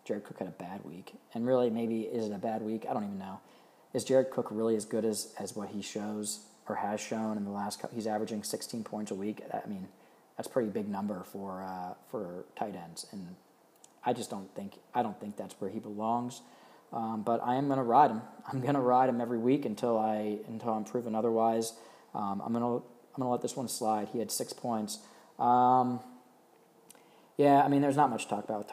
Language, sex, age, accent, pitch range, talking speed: English, male, 20-39, American, 105-120 Hz, 225 wpm